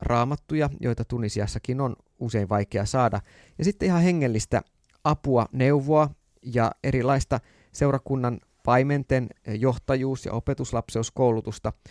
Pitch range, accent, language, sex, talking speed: 110-145 Hz, native, Finnish, male, 100 wpm